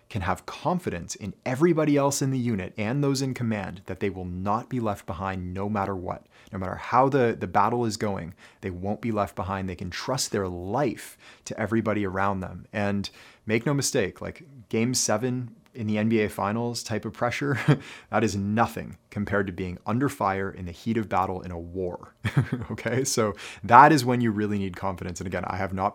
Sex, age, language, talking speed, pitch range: male, 30-49, English, 205 wpm, 95-125 Hz